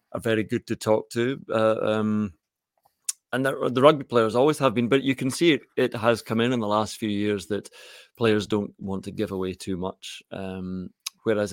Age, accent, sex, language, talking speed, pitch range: 30-49, British, male, English, 210 wpm, 100-125 Hz